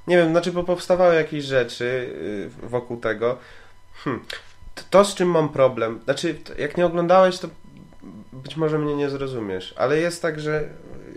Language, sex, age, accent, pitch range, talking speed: Polish, male, 20-39, native, 110-130 Hz, 145 wpm